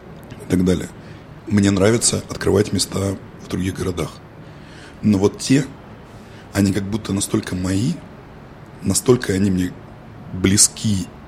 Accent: native